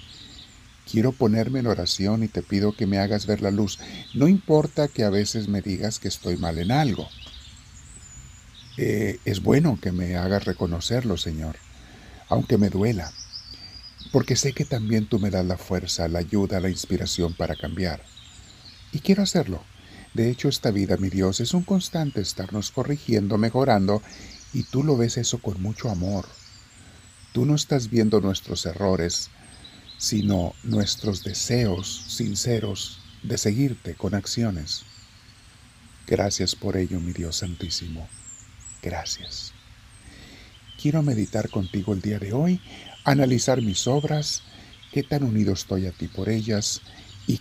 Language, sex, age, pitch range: Spanish, male, 50-69, 95-115 Hz